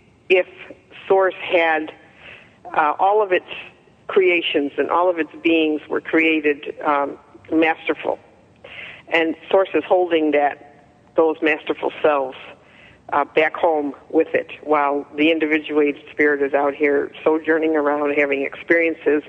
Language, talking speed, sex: English, 130 wpm, female